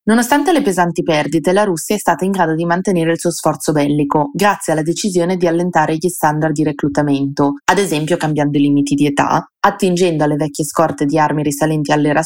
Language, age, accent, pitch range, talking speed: Italian, 20-39, native, 155-190 Hz, 195 wpm